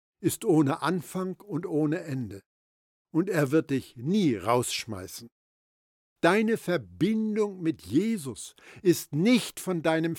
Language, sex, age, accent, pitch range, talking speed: German, male, 60-79, German, 120-185 Hz, 120 wpm